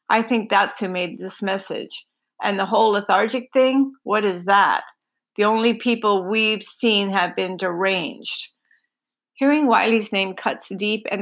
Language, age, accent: English, 50-69, American